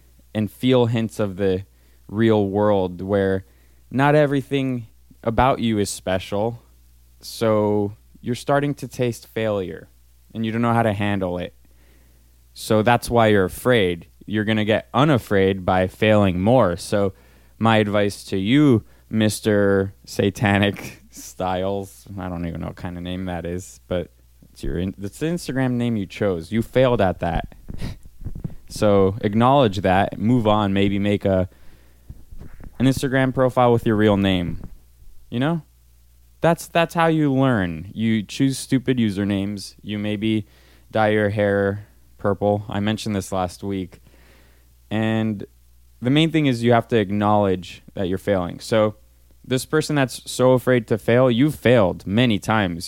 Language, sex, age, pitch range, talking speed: English, male, 20-39, 90-115 Hz, 150 wpm